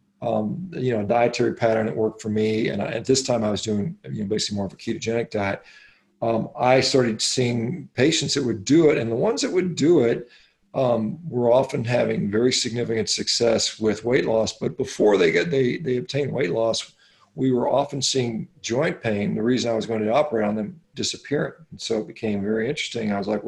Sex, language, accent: male, English, American